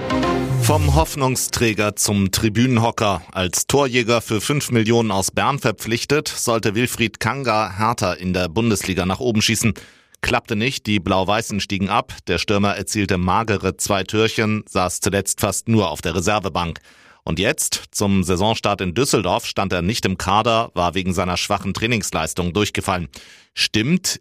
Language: German